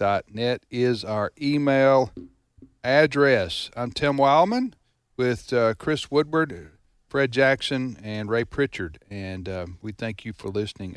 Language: English